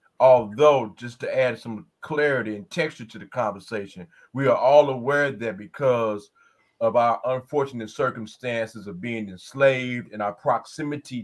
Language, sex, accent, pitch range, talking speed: English, male, American, 115-155 Hz, 145 wpm